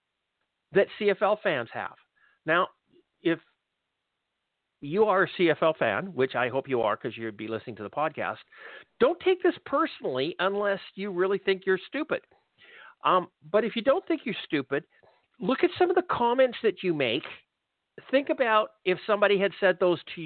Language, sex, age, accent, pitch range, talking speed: English, male, 50-69, American, 165-280 Hz, 170 wpm